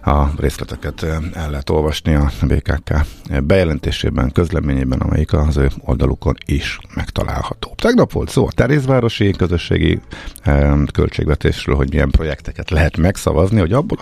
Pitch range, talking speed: 70-95 Hz, 125 wpm